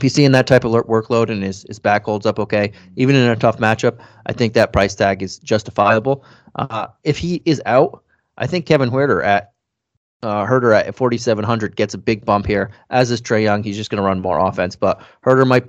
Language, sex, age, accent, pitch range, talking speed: English, male, 20-39, American, 105-125 Hz, 230 wpm